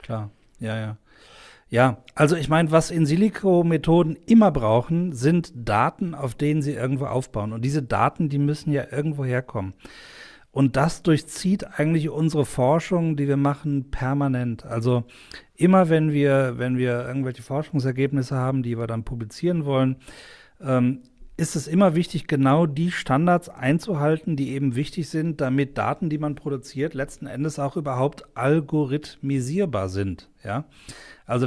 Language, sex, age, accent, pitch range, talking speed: German, male, 40-59, German, 130-160 Hz, 150 wpm